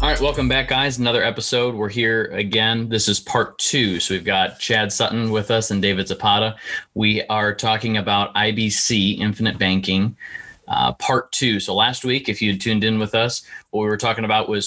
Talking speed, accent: 200 wpm, American